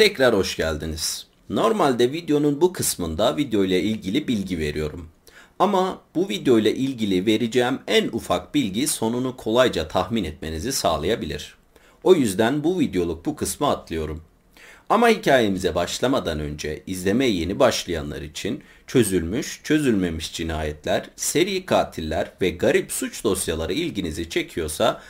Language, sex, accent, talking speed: Turkish, male, native, 115 wpm